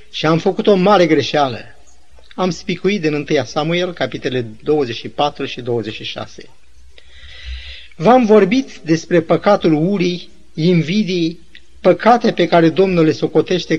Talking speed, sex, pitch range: 115 wpm, male, 140-200 Hz